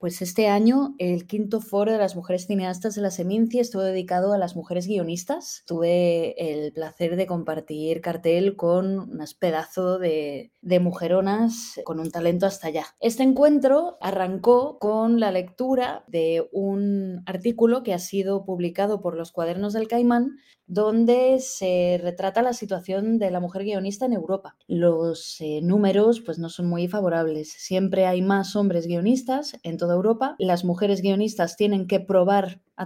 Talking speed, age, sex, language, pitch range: 160 wpm, 20-39, female, Spanish, 175-225 Hz